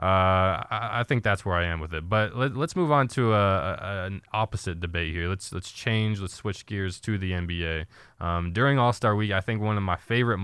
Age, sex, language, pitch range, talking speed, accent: 20-39, male, English, 95-110 Hz, 235 wpm, American